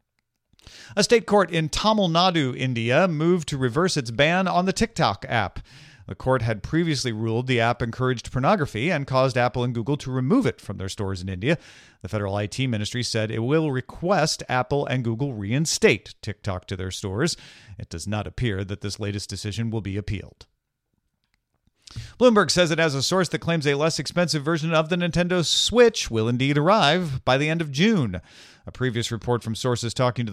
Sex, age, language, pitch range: male, 40-59, English, 105-150 Hz